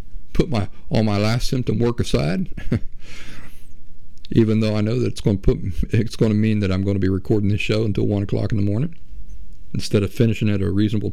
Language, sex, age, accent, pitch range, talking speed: English, male, 50-69, American, 95-115 Hz, 220 wpm